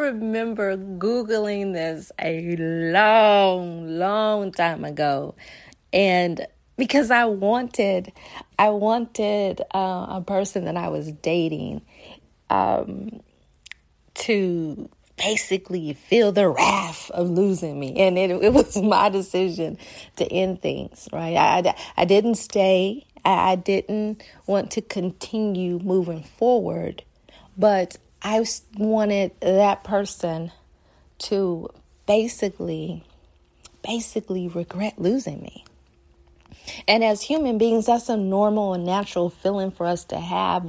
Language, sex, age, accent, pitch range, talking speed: English, female, 40-59, American, 170-220 Hz, 110 wpm